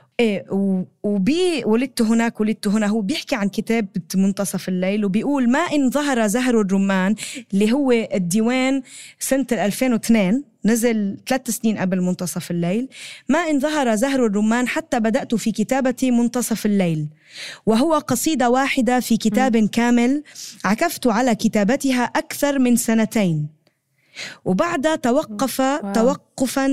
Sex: female